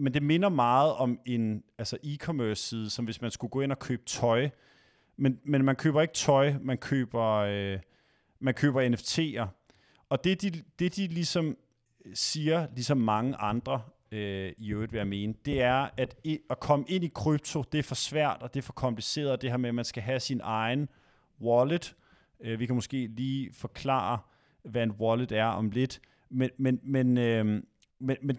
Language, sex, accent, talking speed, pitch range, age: Danish, male, native, 190 wpm, 115-145 Hz, 30-49